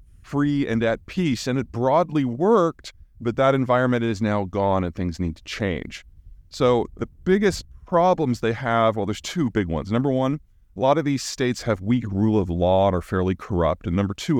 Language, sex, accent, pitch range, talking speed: English, male, American, 100-130 Hz, 205 wpm